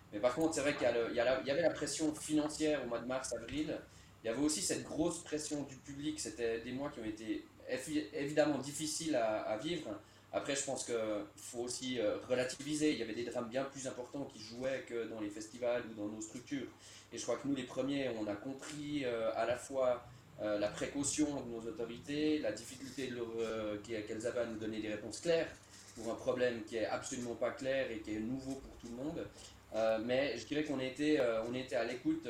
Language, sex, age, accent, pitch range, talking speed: French, male, 20-39, French, 115-140 Hz, 235 wpm